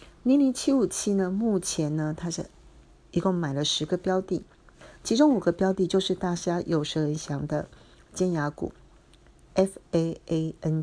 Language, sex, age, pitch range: Chinese, female, 50-69, 145-185 Hz